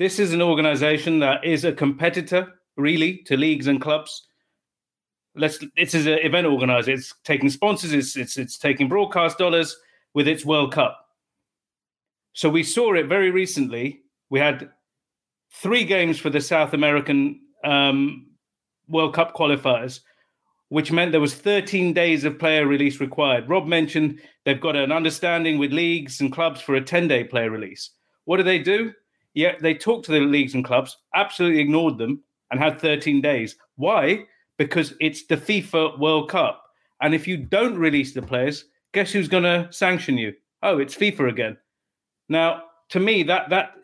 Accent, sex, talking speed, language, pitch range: British, male, 165 wpm, English, 140-170 Hz